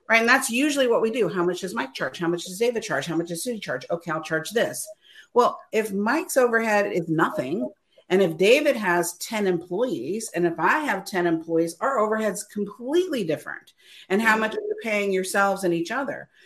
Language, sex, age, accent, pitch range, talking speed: English, female, 50-69, American, 175-235 Hz, 210 wpm